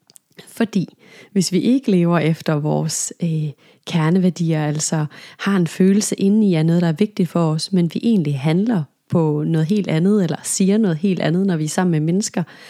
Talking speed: 190 wpm